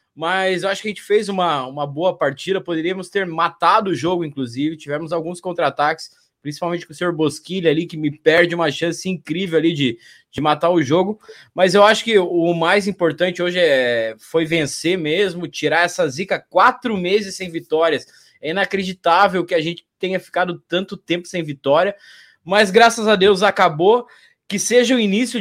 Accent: Brazilian